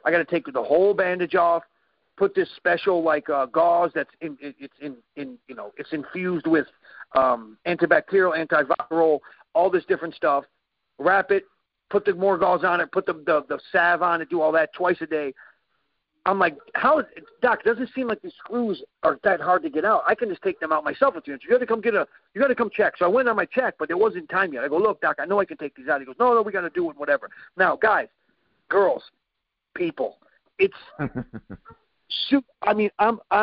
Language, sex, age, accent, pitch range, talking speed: English, male, 40-59, American, 160-220 Hz, 235 wpm